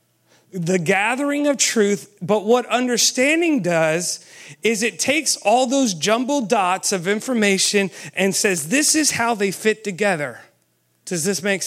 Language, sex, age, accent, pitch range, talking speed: English, male, 30-49, American, 180-245 Hz, 145 wpm